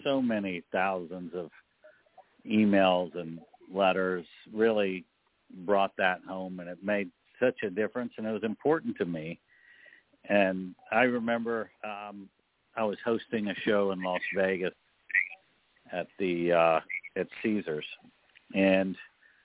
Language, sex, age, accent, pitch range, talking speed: English, male, 60-79, American, 90-110 Hz, 125 wpm